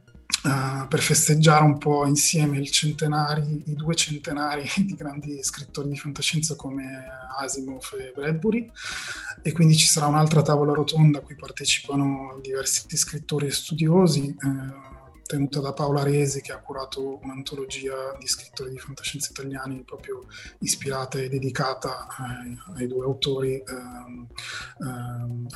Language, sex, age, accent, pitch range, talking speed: Italian, male, 20-39, native, 130-150 Hz, 130 wpm